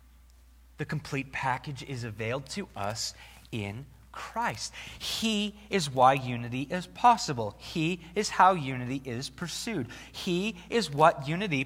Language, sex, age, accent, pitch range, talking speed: English, male, 30-49, American, 115-180 Hz, 130 wpm